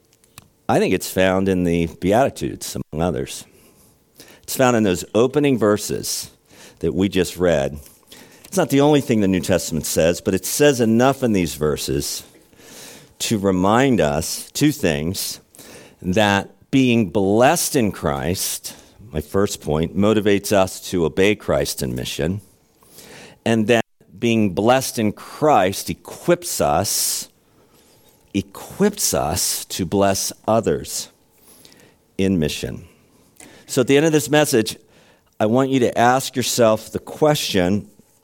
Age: 50-69